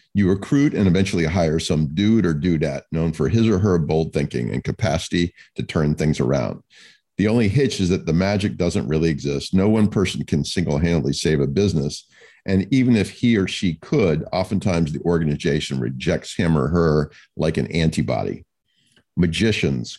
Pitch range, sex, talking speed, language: 75-100 Hz, male, 175 wpm, English